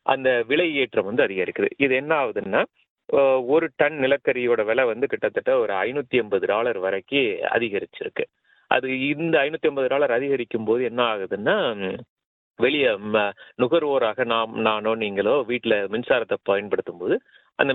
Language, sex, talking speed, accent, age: Tamil, male, 130 wpm, native, 30-49